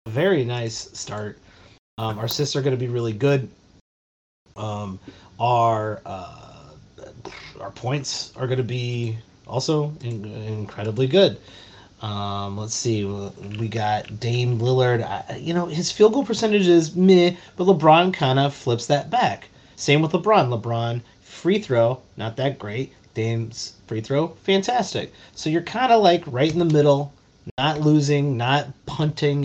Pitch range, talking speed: 110-150 Hz, 145 wpm